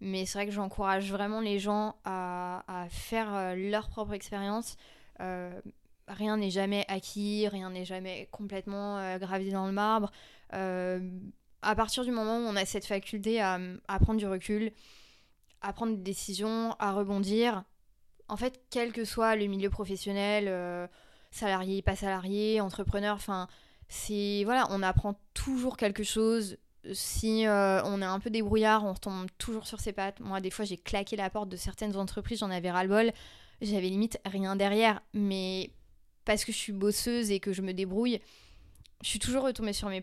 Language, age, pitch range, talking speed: French, 20-39, 195-215 Hz, 180 wpm